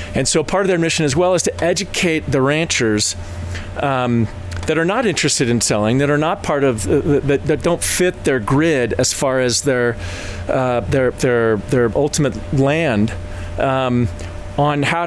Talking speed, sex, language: 175 wpm, male, English